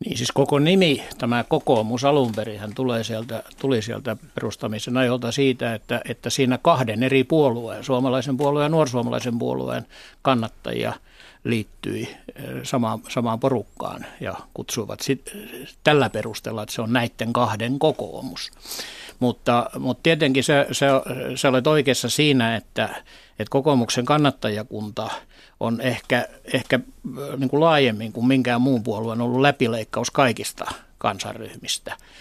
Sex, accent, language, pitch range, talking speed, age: male, native, Finnish, 120-135 Hz, 120 wpm, 60-79